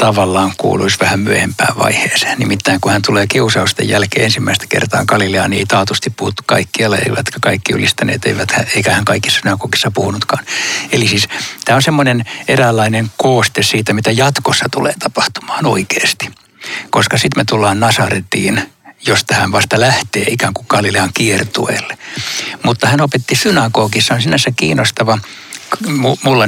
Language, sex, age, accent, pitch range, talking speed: Finnish, male, 60-79, native, 105-125 Hz, 140 wpm